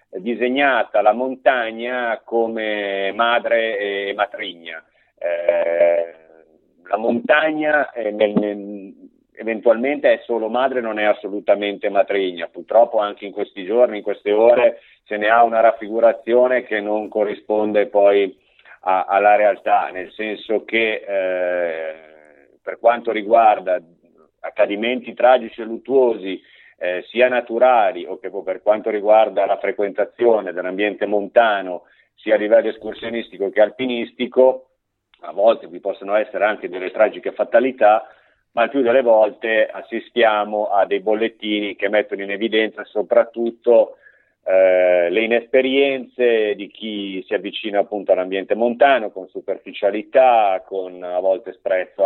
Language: Italian